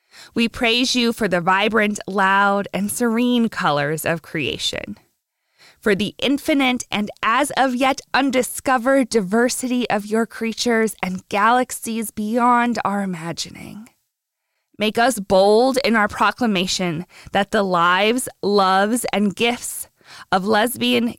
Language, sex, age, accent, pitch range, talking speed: English, female, 20-39, American, 185-240 Hz, 115 wpm